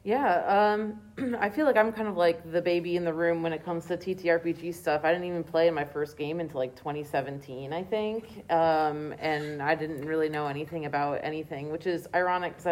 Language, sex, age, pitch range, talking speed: English, female, 30-49, 150-180 Hz, 215 wpm